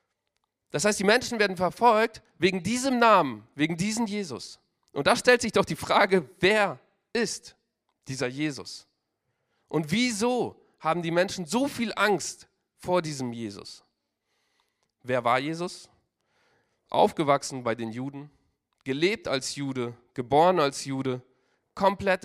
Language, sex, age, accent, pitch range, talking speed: German, male, 40-59, German, 145-200 Hz, 130 wpm